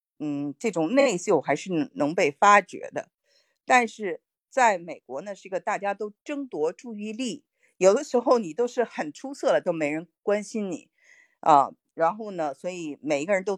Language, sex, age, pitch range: Chinese, female, 50-69, 165-255 Hz